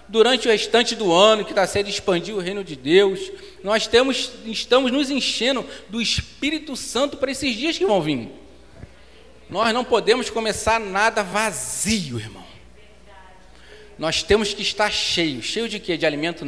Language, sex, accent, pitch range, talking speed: Portuguese, male, Brazilian, 170-265 Hz, 155 wpm